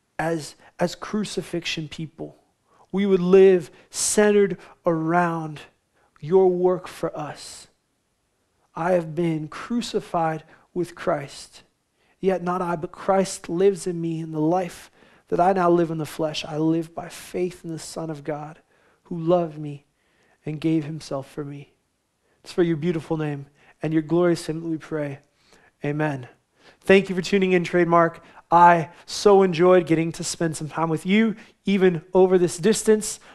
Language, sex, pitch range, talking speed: English, male, 155-190 Hz, 155 wpm